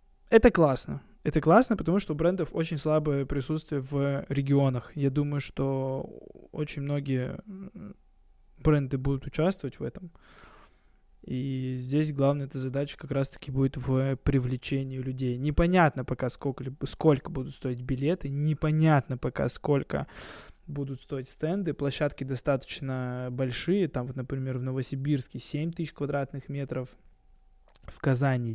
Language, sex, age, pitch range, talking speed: Russian, male, 20-39, 130-155 Hz, 125 wpm